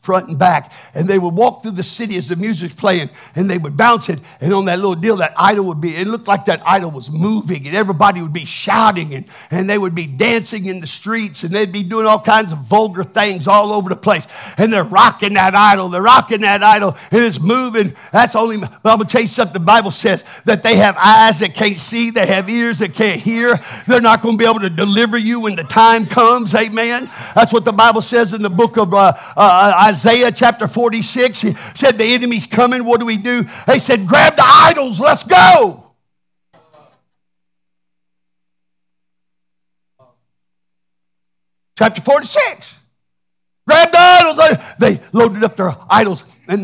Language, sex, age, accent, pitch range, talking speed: English, male, 50-69, American, 170-225 Hz, 200 wpm